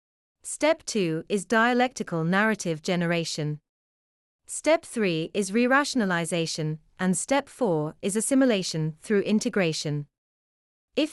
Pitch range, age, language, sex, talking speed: 160-225 Hz, 30-49, English, female, 95 wpm